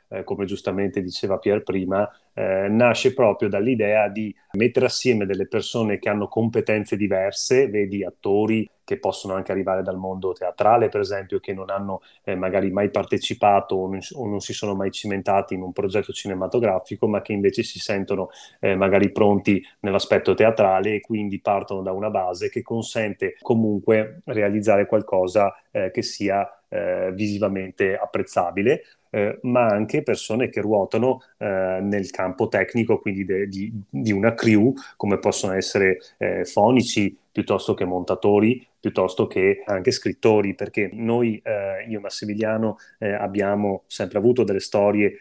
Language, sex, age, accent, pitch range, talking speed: Italian, male, 30-49, native, 95-110 Hz, 150 wpm